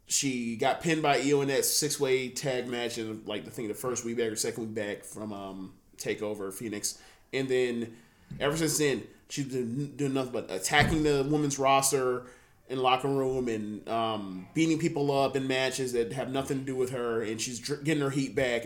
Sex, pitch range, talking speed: male, 120-145 Hz, 205 wpm